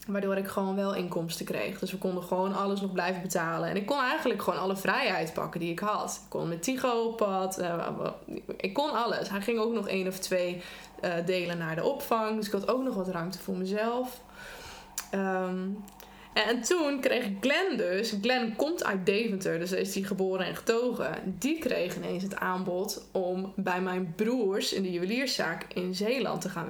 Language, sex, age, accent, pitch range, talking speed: Dutch, female, 20-39, Dutch, 185-240 Hz, 200 wpm